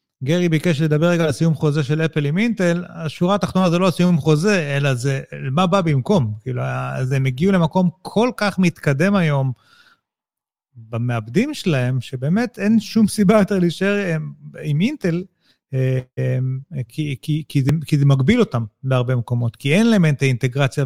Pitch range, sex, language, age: 130-180 Hz, male, Hebrew, 40-59